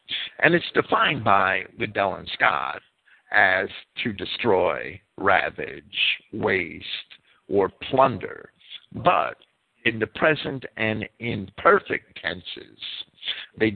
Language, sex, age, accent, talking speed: English, male, 50-69, American, 100 wpm